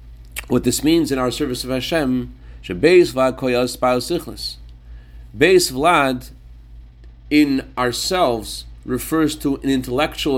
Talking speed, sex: 105 wpm, male